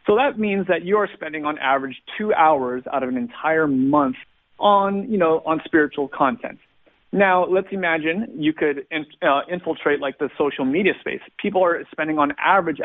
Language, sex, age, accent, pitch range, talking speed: English, male, 30-49, American, 140-185 Hz, 180 wpm